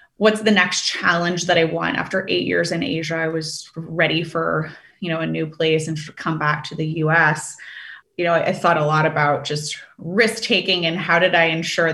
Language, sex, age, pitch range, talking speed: English, female, 20-39, 160-185 Hz, 210 wpm